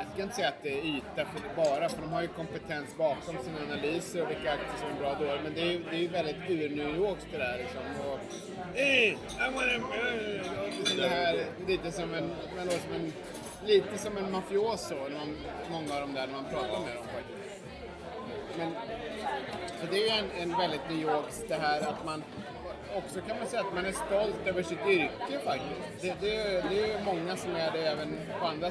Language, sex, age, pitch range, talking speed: Swedish, male, 30-49, 165-205 Hz, 205 wpm